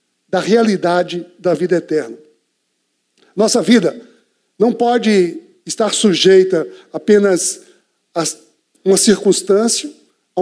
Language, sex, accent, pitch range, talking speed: Portuguese, male, Brazilian, 205-285 Hz, 90 wpm